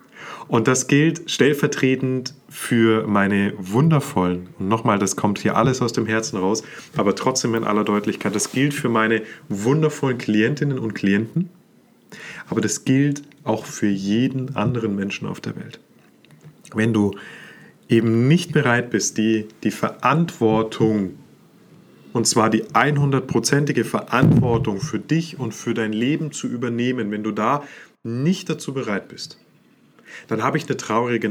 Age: 30-49